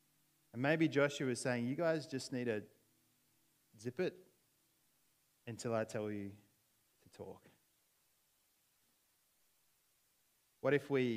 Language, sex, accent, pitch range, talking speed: English, male, Australian, 125-165 Hz, 115 wpm